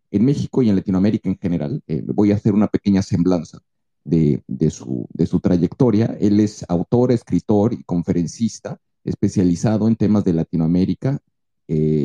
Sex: male